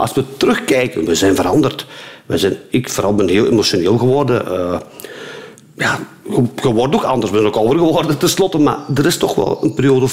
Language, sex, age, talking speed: Dutch, male, 50-69, 195 wpm